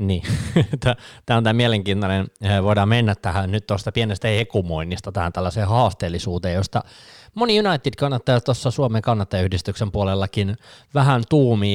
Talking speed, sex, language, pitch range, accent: 130 wpm, male, Finnish, 95-120 Hz, native